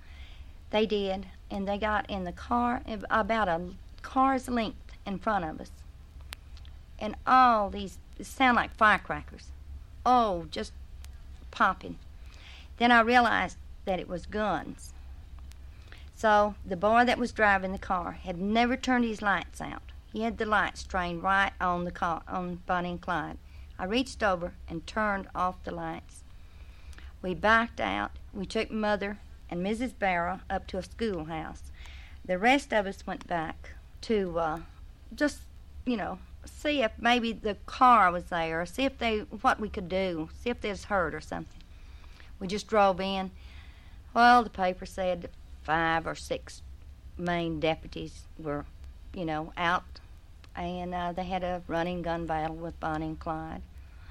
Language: English